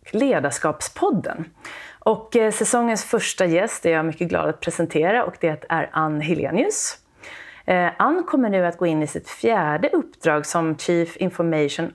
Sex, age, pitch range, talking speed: female, 30-49, 155-205 Hz, 145 wpm